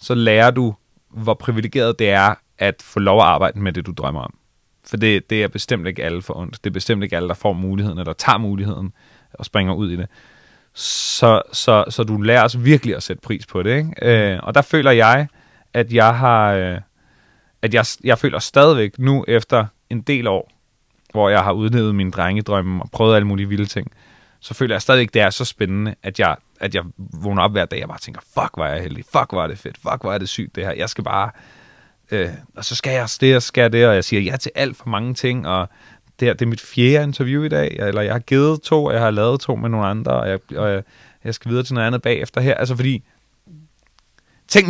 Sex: male